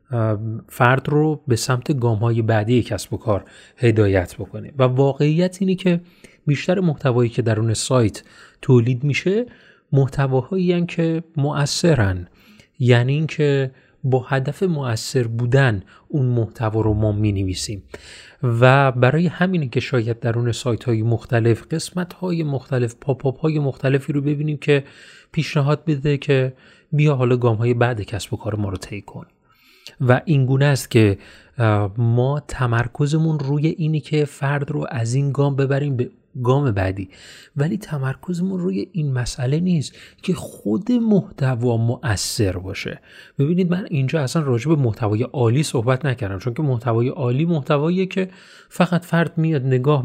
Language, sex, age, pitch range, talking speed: Persian, male, 30-49, 120-150 Hz, 140 wpm